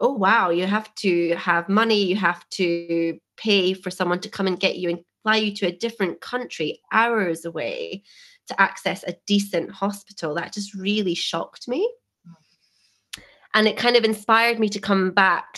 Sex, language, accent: female, English, British